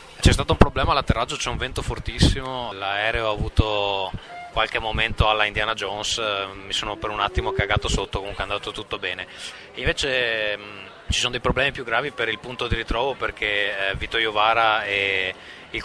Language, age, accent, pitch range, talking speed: Italian, 20-39, native, 100-120 Hz, 180 wpm